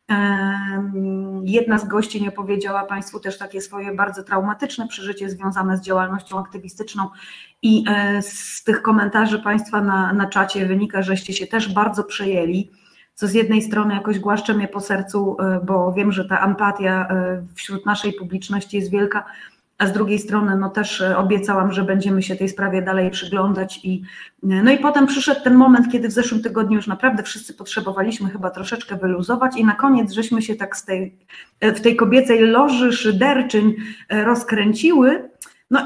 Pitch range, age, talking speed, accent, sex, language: 195-230 Hz, 20-39, 160 wpm, native, female, Polish